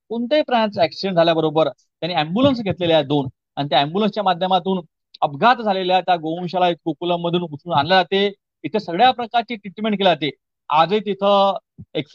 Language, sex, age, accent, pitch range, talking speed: Marathi, male, 30-49, native, 180-240 Hz, 150 wpm